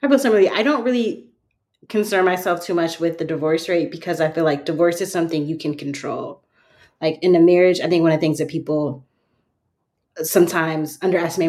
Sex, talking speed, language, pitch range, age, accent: female, 185 wpm, English, 160-185 Hz, 20-39, American